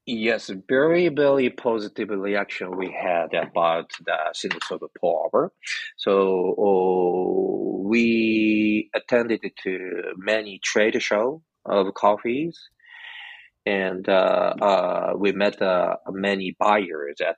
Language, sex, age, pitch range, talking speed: English, male, 40-59, 100-130 Hz, 105 wpm